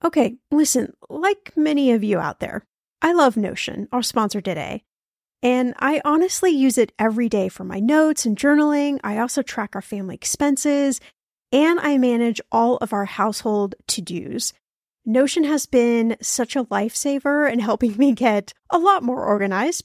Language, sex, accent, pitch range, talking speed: English, female, American, 225-295 Hz, 165 wpm